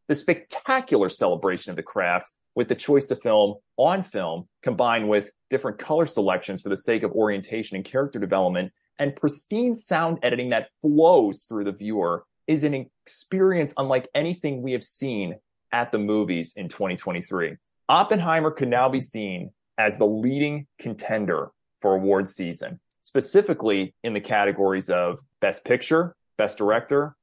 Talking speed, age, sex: 150 wpm, 30-49, male